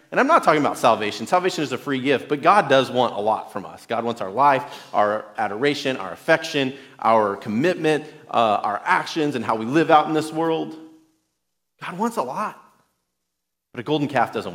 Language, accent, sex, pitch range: English, American, male, 115-155 Hz